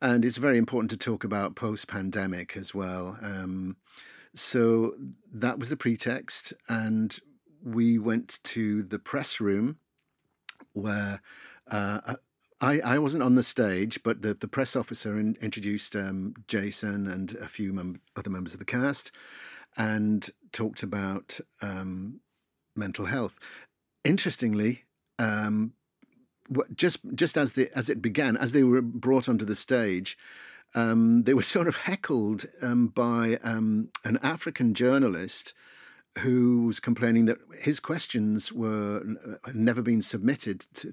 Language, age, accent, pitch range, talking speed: English, 50-69, British, 105-125 Hz, 140 wpm